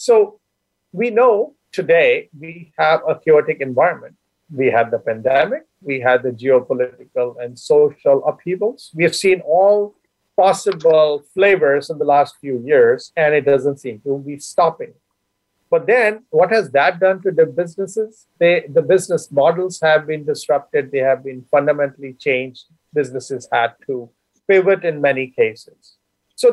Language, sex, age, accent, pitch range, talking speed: English, male, 50-69, Indian, 145-235 Hz, 150 wpm